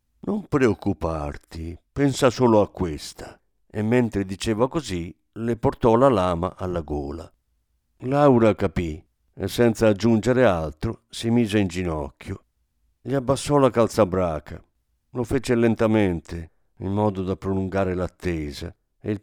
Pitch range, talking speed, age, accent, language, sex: 85-120 Hz, 130 wpm, 50-69, native, Italian, male